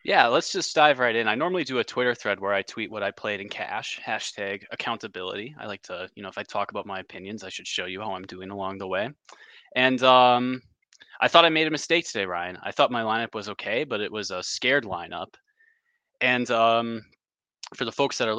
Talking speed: 235 wpm